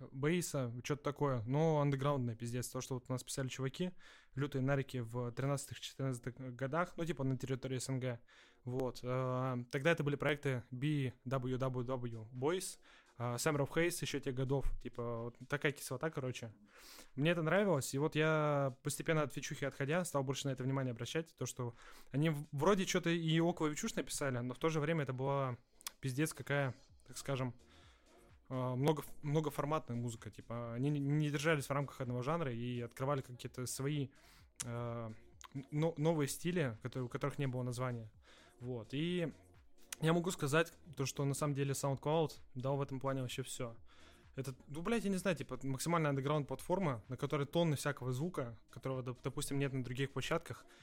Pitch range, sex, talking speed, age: 125-150 Hz, male, 165 wpm, 20-39